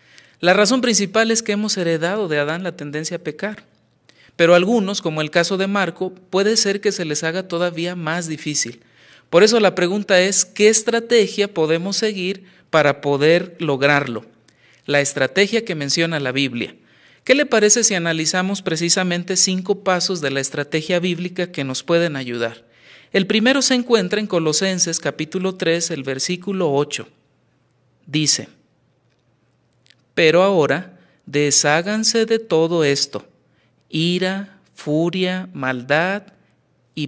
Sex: male